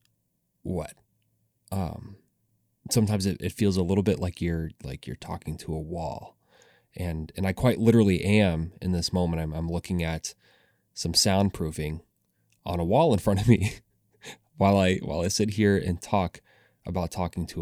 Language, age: English, 20-39